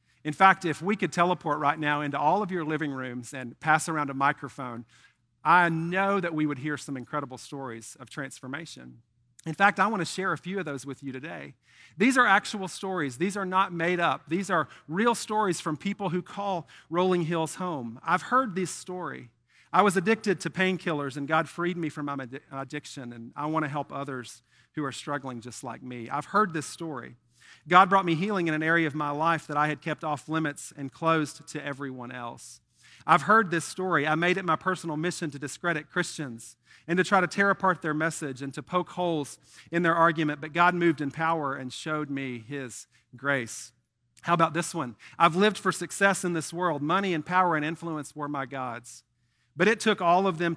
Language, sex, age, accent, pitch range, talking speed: English, male, 40-59, American, 135-175 Hz, 210 wpm